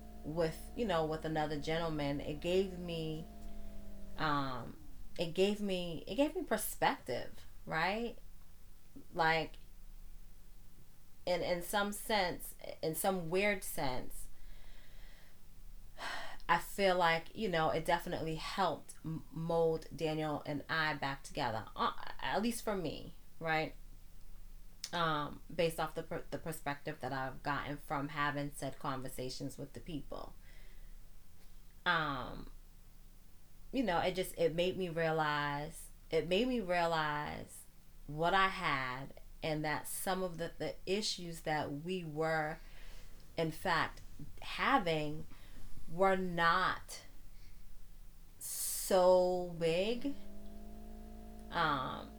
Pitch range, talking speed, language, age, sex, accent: 125-180 Hz, 110 wpm, English, 20-39, female, American